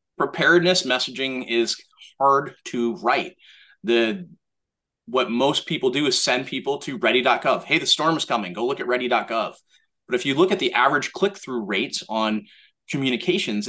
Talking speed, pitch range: 160 wpm, 115-175 Hz